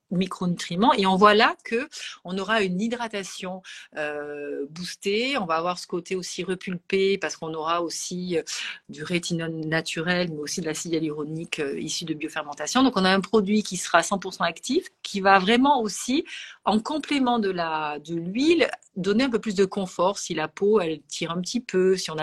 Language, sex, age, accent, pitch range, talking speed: French, female, 40-59, French, 170-220 Hz, 190 wpm